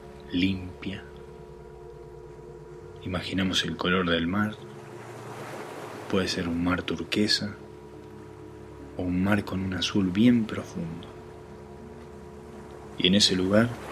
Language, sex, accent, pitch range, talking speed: Spanish, male, Argentinian, 70-95 Hz, 100 wpm